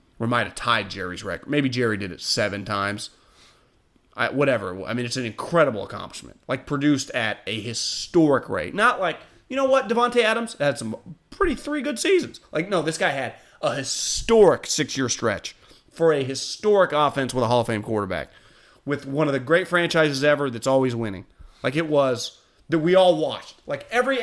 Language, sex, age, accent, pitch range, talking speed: English, male, 30-49, American, 135-225 Hz, 190 wpm